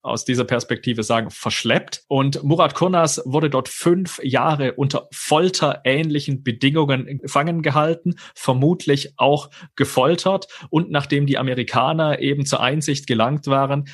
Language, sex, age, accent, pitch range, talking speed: German, male, 30-49, German, 125-155 Hz, 125 wpm